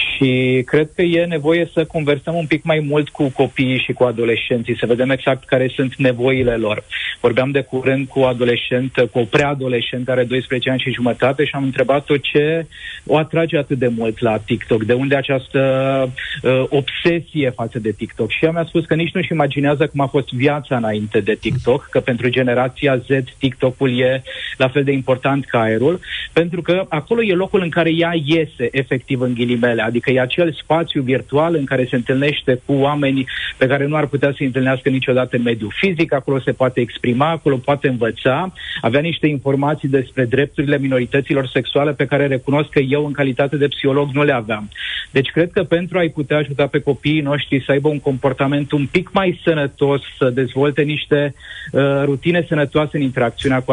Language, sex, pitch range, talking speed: Romanian, male, 130-150 Hz, 190 wpm